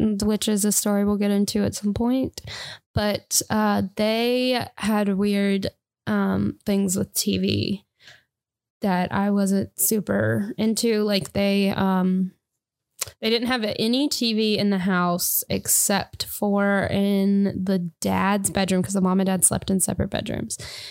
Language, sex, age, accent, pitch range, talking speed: English, female, 10-29, American, 185-210 Hz, 140 wpm